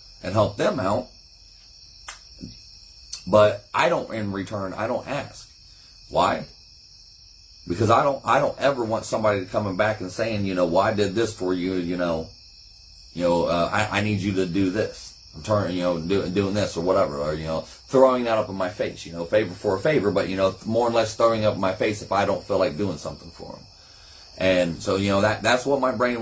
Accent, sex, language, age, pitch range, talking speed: American, male, English, 30-49, 90-120 Hz, 220 wpm